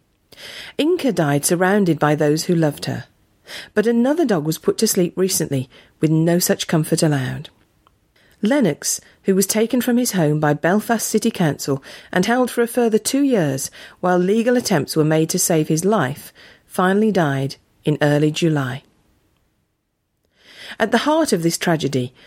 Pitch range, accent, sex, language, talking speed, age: 150-215 Hz, British, female, English, 160 wpm, 40-59